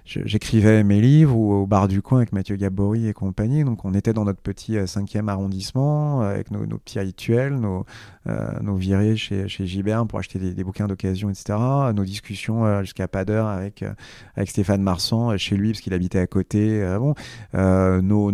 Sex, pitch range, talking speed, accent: male, 100-120 Hz, 185 wpm, French